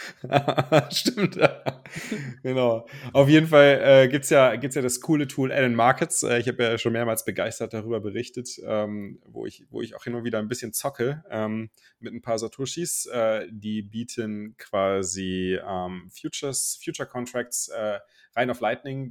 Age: 30-49